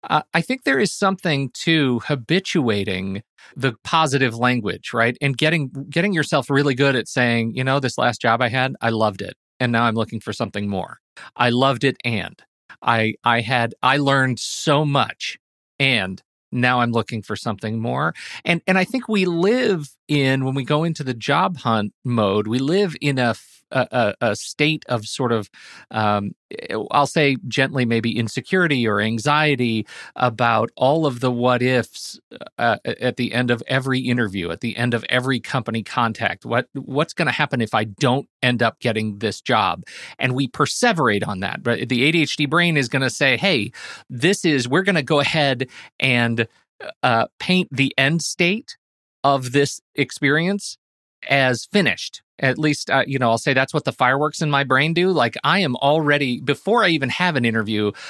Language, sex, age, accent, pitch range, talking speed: English, male, 40-59, American, 115-150 Hz, 185 wpm